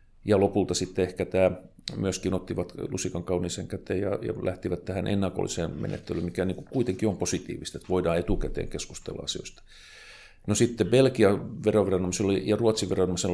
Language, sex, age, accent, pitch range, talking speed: Finnish, male, 40-59, native, 90-100 Hz, 150 wpm